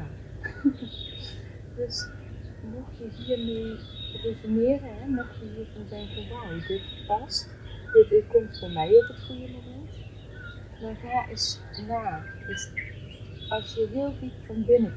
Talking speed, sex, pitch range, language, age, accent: 130 wpm, female, 100-110 Hz, English, 30-49, Dutch